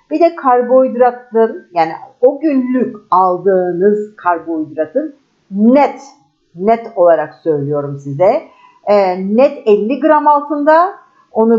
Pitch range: 200-280 Hz